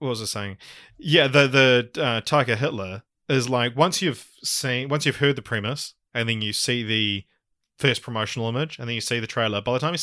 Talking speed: 225 wpm